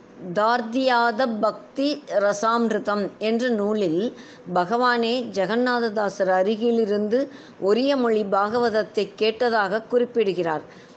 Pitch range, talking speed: 205-245 Hz, 60 wpm